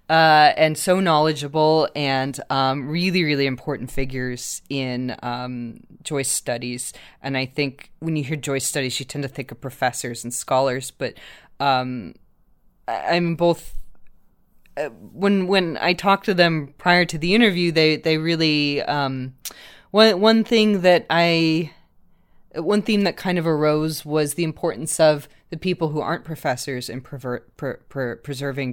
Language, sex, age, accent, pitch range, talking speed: English, female, 20-39, American, 125-160 Hz, 150 wpm